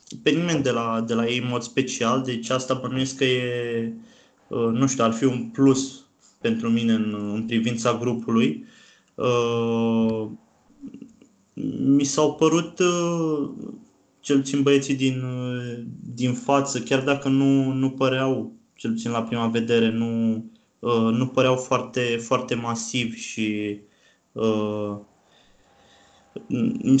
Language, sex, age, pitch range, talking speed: Romanian, male, 20-39, 115-140 Hz, 120 wpm